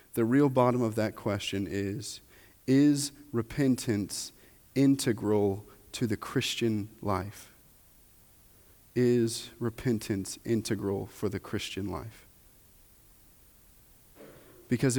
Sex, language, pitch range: male, English, 105-130 Hz